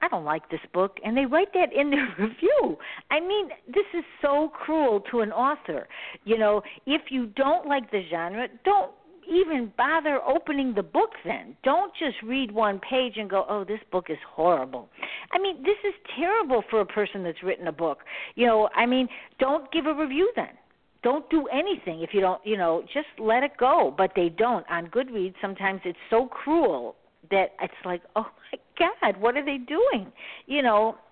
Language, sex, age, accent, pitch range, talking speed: English, female, 50-69, American, 190-290 Hz, 195 wpm